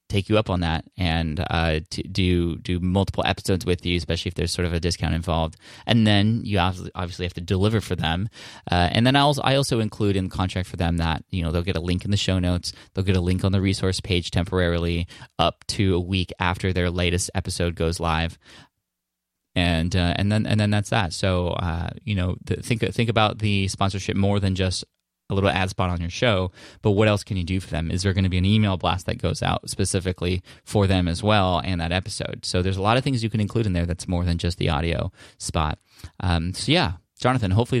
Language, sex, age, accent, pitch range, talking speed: English, male, 20-39, American, 90-105 Hz, 240 wpm